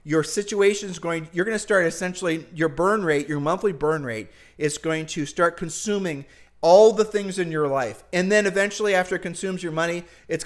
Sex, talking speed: male, 205 wpm